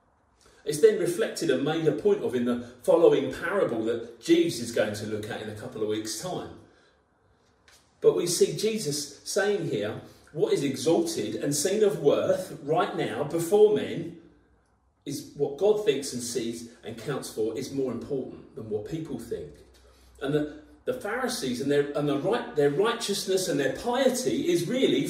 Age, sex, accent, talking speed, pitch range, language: 40-59, male, British, 170 wpm, 130-220 Hz, English